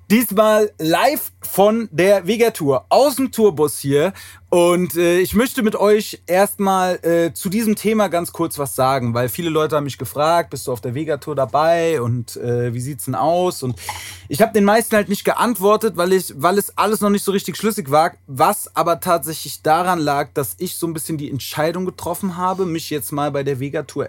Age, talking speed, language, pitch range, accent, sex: 30-49, 200 wpm, German, 145-200 Hz, German, male